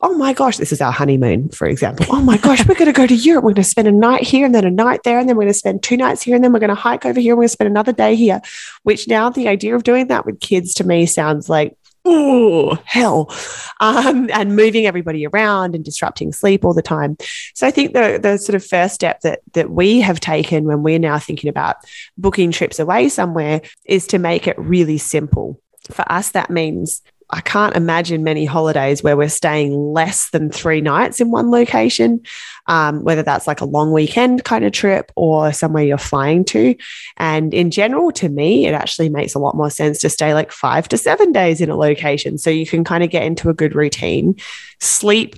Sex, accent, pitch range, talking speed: female, Australian, 155-215 Hz, 235 wpm